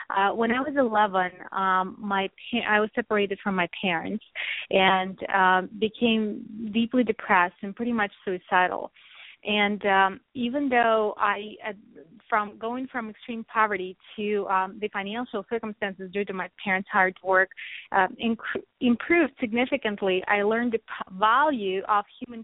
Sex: female